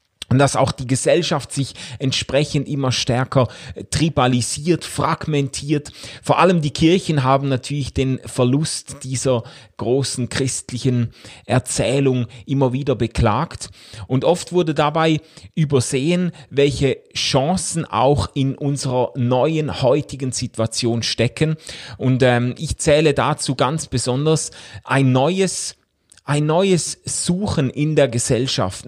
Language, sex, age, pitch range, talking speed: German, male, 30-49, 125-155 Hz, 115 wpm